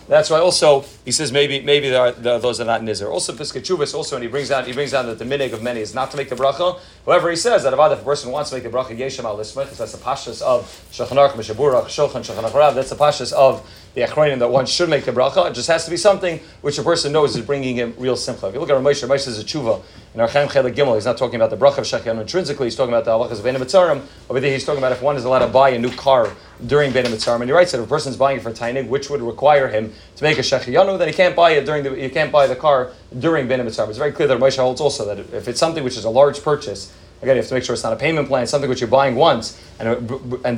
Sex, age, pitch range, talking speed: male, 30-49, 120-145 Hz, 285 wpm